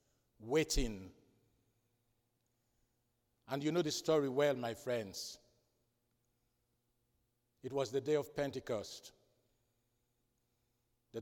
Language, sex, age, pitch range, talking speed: English, male, 60-79, 120-185 Hz, 85 wpm